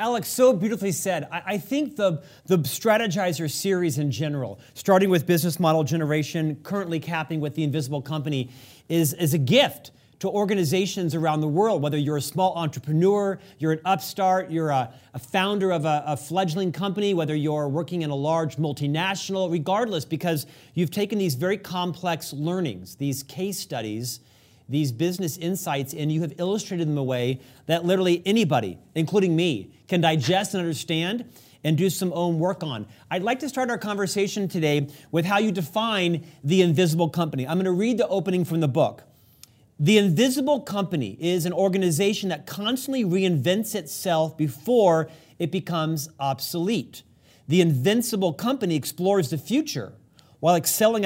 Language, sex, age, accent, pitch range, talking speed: English, male, 40-59, American, 150-190 Hz, 165 wpm